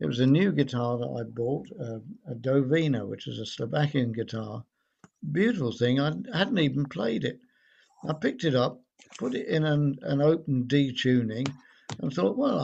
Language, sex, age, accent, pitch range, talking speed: English, male, 60-79, British, 120-155 Hz, 180 wpm